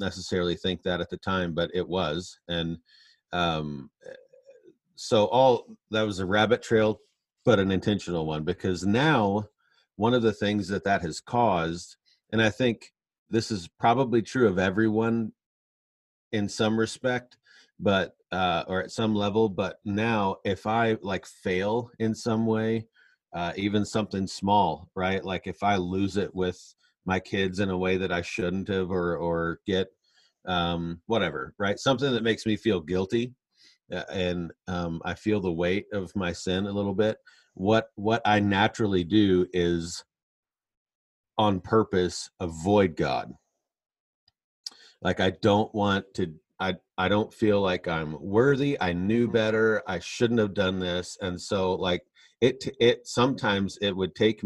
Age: 40-59